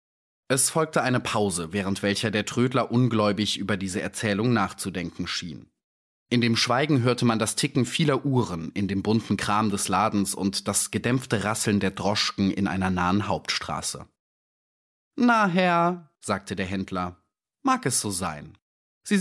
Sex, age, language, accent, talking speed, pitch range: male, 30-49, German, German, 155 wpm, 100-140 Hz